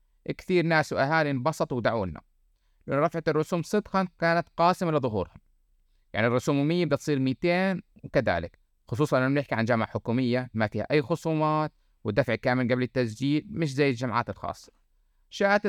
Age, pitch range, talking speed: 30-49, 120-170 Hz, 145 wpm